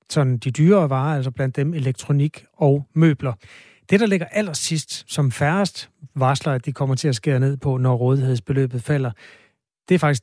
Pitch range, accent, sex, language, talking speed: 130-155 Hz, native, male, Danish, 180 wpm